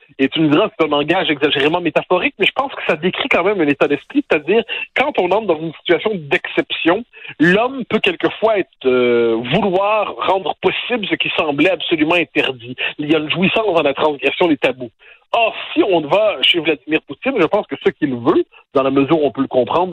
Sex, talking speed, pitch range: male, 220 wpm, 145-230 Hz